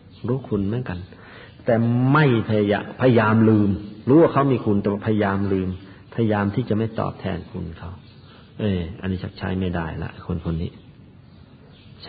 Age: 50-69